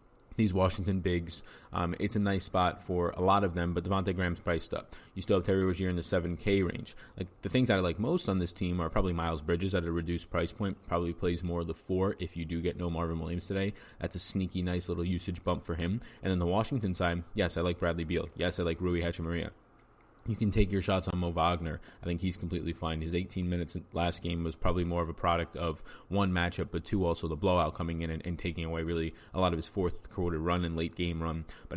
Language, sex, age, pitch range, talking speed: English, male, 20-39, 85-100 Hz, 255 wpm